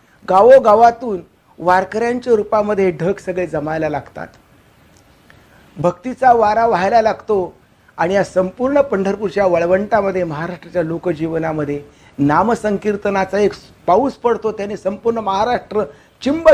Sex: male